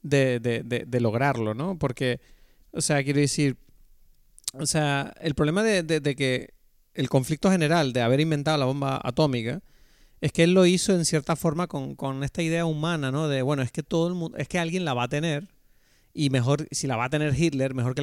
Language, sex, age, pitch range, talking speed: Spanish, male, 30-49, 125-150 Hz, 220 wpm